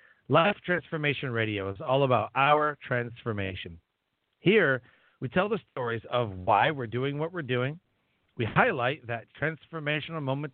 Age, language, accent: 40-59, English, American